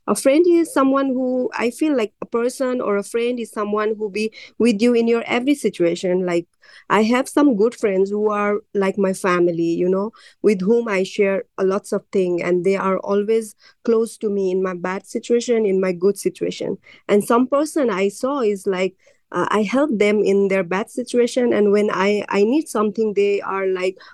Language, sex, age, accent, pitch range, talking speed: English, female, 30-49, Indian, 190-225 Hz, 205 wpm